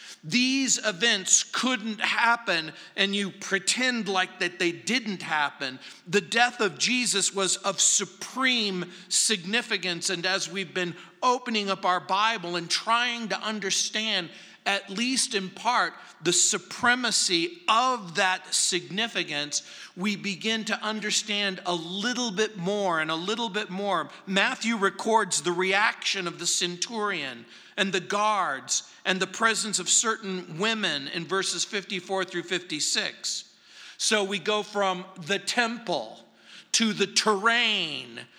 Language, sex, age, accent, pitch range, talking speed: English, male, 50-69, American, 185-225 Hz, 130 wpm